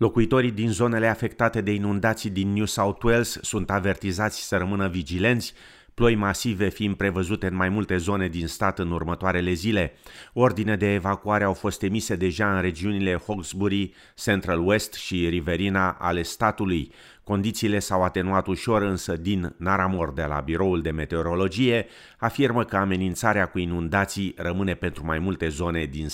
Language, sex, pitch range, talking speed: Romanian, male, 95-115 Hz, 155 wpm